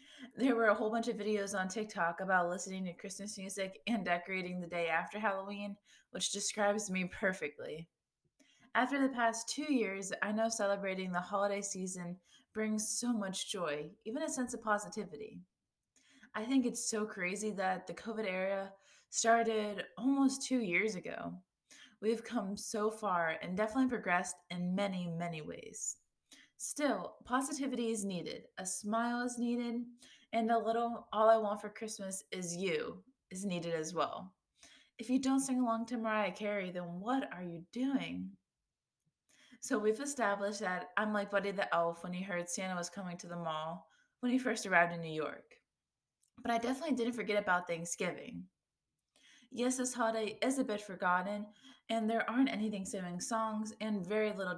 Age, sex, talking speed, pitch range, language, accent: 20-39, female, 160 wpm, 180-235 Hz, English, American